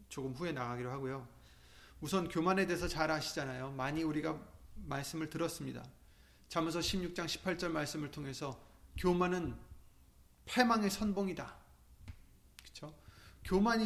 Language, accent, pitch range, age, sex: Korean, native, 120-195 Hz, 30-49, male